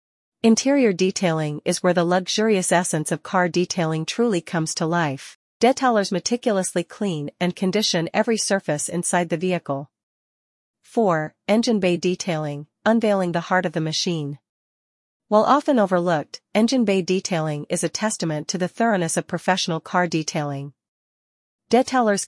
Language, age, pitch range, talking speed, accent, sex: English, 40-59, 160-205 Hz, 135 wpm, American, female